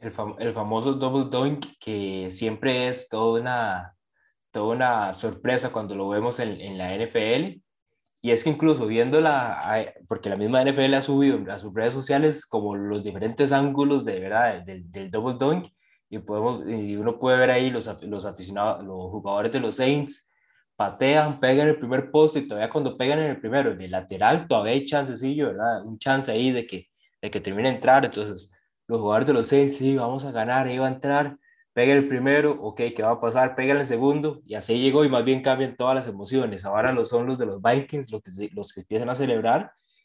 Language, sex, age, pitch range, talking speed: Spanish, male, 20-39, 105-140 Hz, 210 wpm